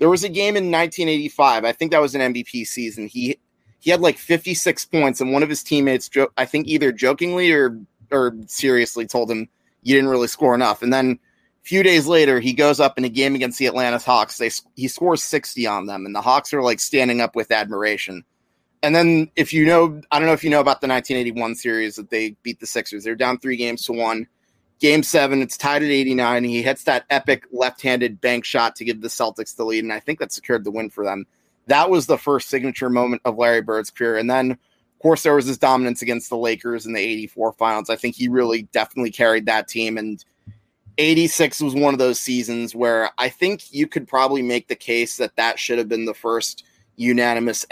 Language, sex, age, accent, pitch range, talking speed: English, male, 30-49, American, 110-135 Hz, 230 wpm